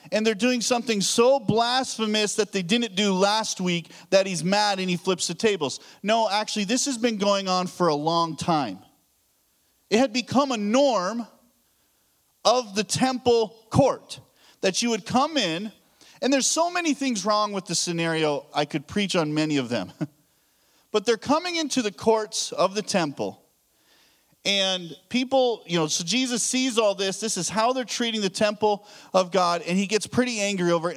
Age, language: 40-59, English